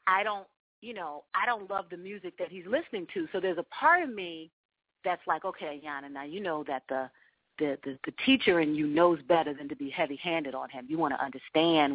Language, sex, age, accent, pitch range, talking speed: English, female, 40-59, American, 155-205 Hz, 230 wpm